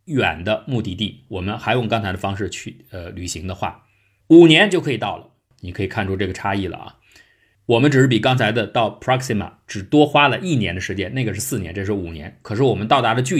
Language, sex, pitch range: Chinese, male, 100-120 Hz